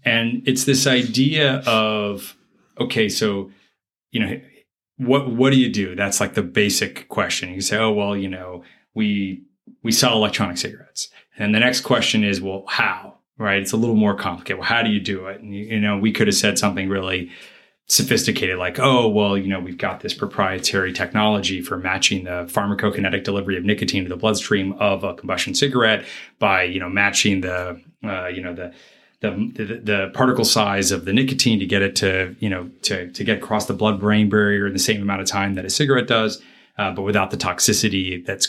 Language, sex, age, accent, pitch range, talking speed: English, male, 30-49, American, 95-115 Hz, 205 wpm